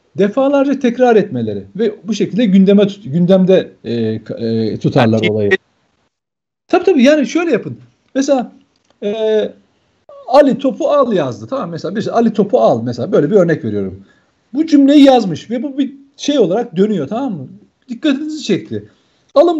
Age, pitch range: 50-69, 165-265 Hz